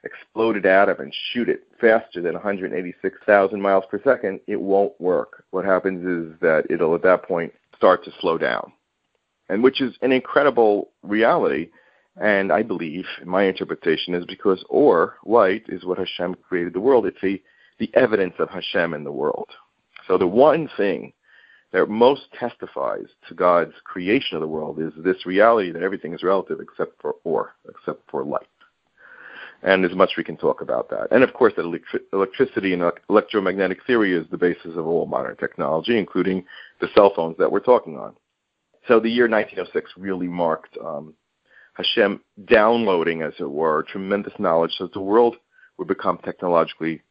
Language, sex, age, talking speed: English, male, 40-59, 180 wpm